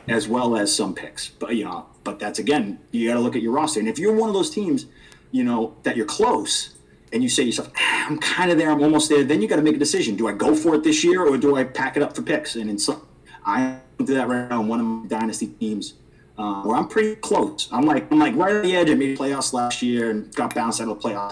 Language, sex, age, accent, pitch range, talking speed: English, male, 30-49, American, 110-150 Hz, 295 wpm